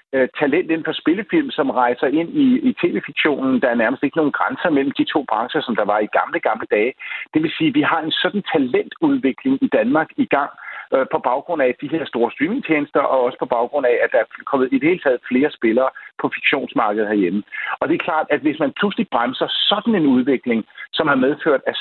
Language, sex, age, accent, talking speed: Danish, male, 50-69, native, 225 wpm